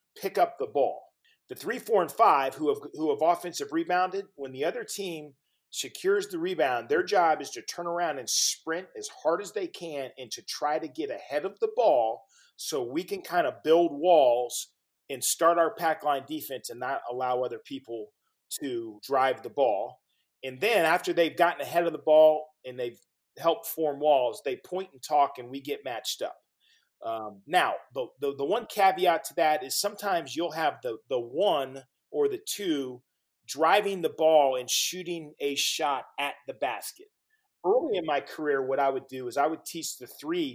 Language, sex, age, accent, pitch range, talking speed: English, male, 40-59, American, 135-205 Hz, 195 wpm